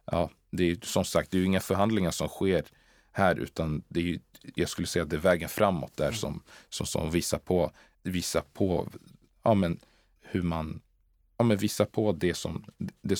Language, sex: Swedish, male